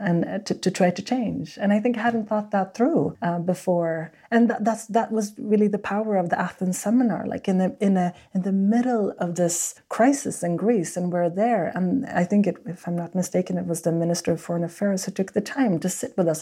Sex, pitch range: female, 165-195 Hz